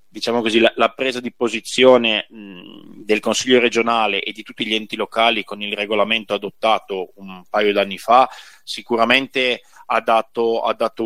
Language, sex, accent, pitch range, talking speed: Italian, male, native, 105-115 Hz, 150 wpm